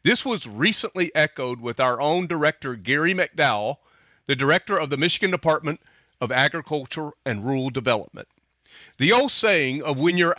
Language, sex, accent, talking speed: English, male, American, 155 wpm